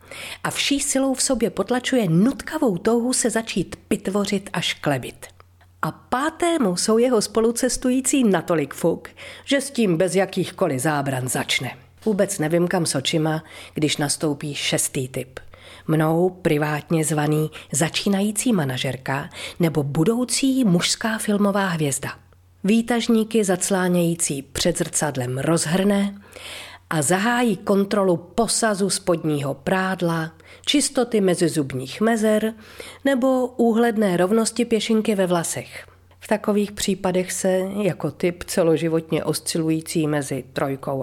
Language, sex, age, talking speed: Czech, female, 40-59, 110 wpm